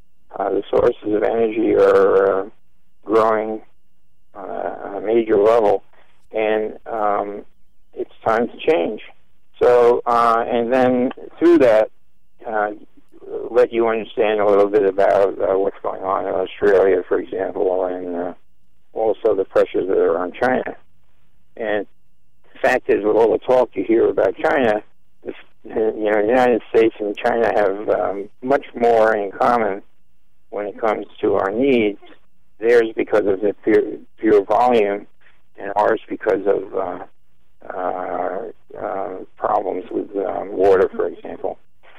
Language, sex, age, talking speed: English, male, 50-69, 140 wpm